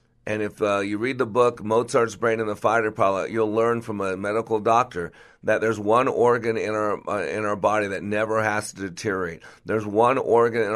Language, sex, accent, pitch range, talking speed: English, male, American, 100-115 Hz, 210 wpm